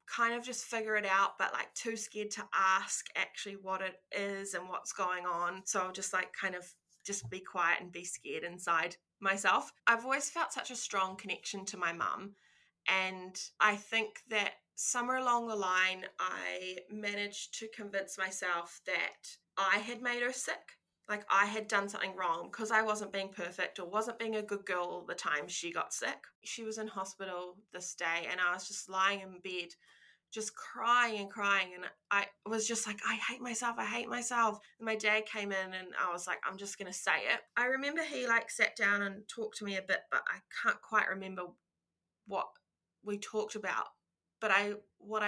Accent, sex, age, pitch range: Australian, female, 20-39, 190-225 Hz